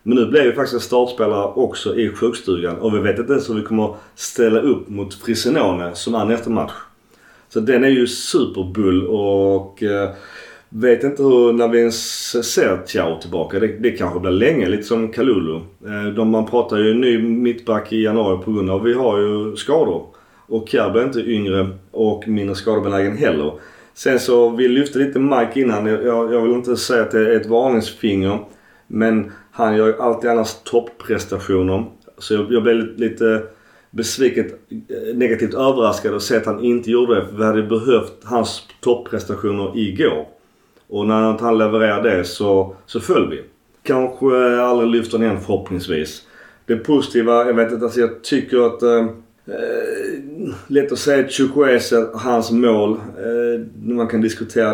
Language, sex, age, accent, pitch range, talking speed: Swedish, male, 30-49, native, 100-120 Hz, 165 wpm